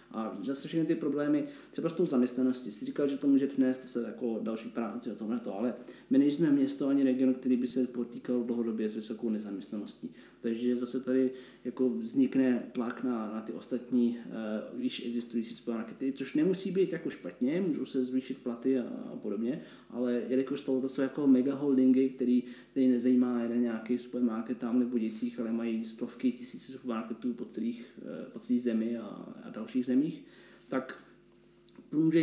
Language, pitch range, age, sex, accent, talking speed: Czech, 120-145 Hz, 20-39, male, native, 170 wpm